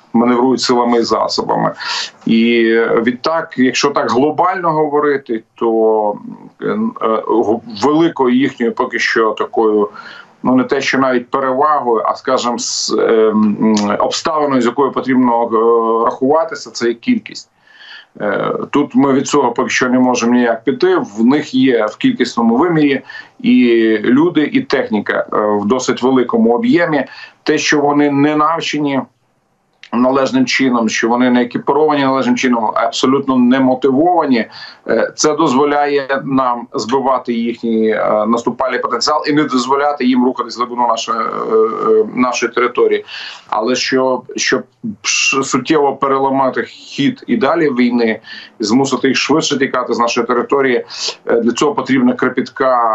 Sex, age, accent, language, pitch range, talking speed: male, 40-59, native, Ukrainian, 120-145 Hz, 125 wpm